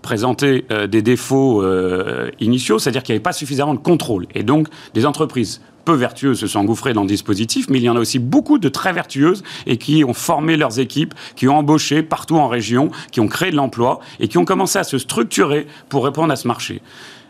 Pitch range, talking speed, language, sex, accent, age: 125-165 Hz, 225 wpm, French, male, French, 30-49